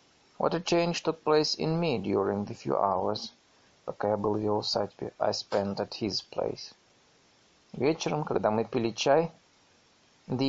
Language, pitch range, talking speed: Russian, 115-155 Hz, 145 wpm